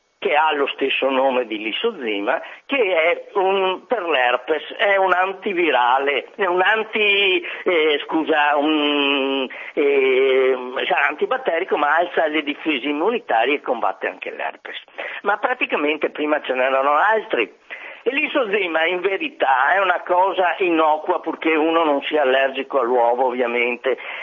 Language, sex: Italian, male